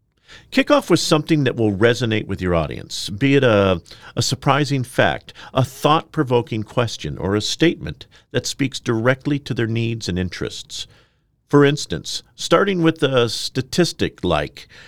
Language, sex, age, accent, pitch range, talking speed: English, male, 50-69, American, 100-140 Hz, 150 wpm